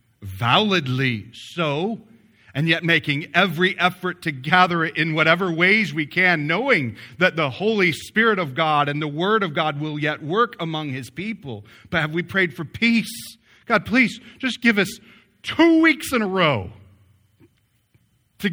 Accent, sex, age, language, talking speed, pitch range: American, male, 40-59, English, 160 wpm, 105-175 Hz